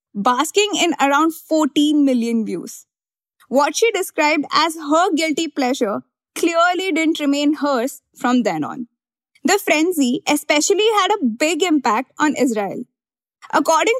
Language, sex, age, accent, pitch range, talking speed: English, female, 20-39, Indian, 275-360 Hz, 130 wpm